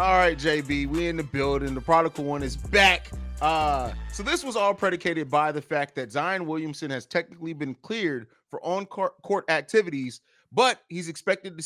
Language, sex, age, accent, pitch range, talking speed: English, male, 30-49, American, 145-190 Hz, 180 wpm